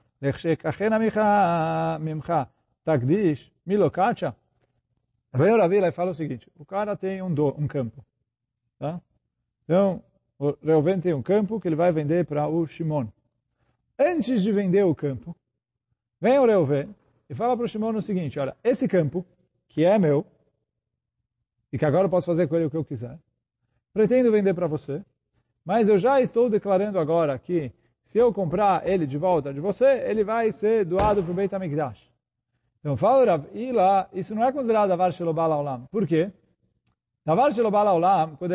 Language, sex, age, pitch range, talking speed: Portuguese, male, 40-59, 145-210 Hz, 155 wpm